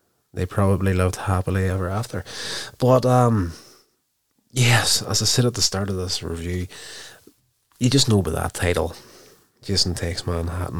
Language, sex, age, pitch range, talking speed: English, male, 30-49, 90-110 Hz, 150 wpm